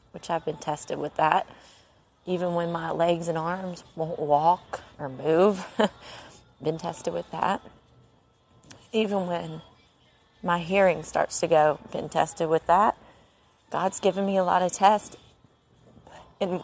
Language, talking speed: English, 140 wpm